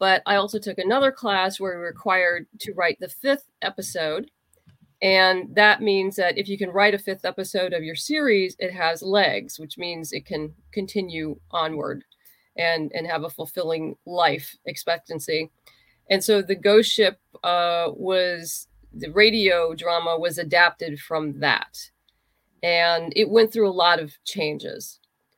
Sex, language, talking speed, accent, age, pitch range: female, English, 160 wpm, American, 40-59, 170-205 Hz